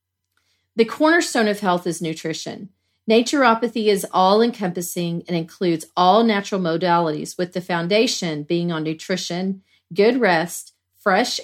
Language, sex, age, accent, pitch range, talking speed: English, female, 40-59, American, 170-225 Hz, 120 wpm